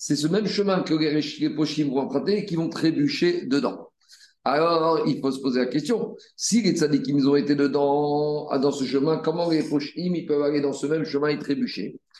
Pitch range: 145-170 Hz